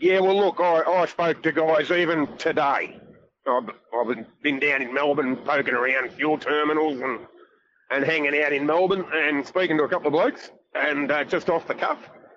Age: 30-49